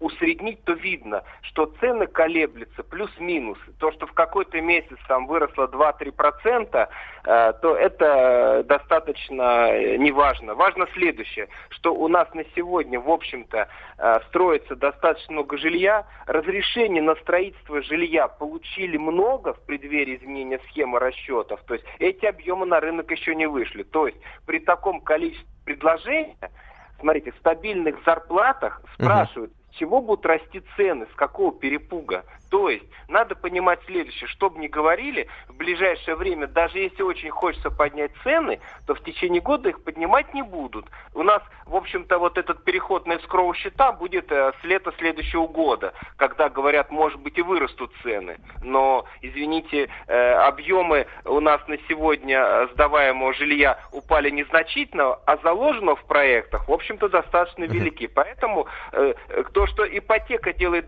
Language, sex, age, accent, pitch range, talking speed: Russian, male, 40-59, native, 150-200 Hz, 140 wpm